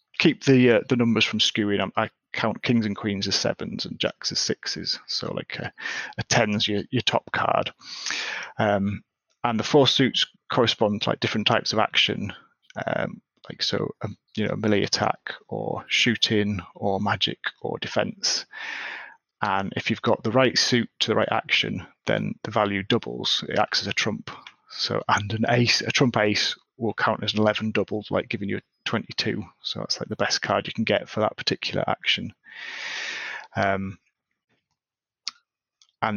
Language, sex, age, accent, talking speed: English, male, 30-49, British, 180 wpm